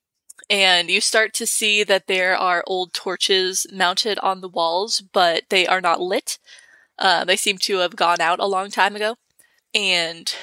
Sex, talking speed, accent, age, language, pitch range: female, 180 wpm, American, 20-39, English, 185-220 Hz